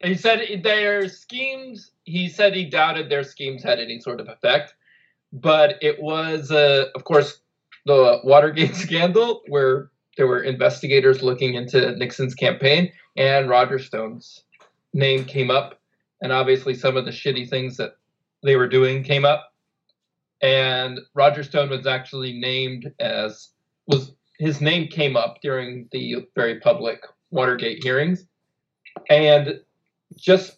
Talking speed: 140 wpm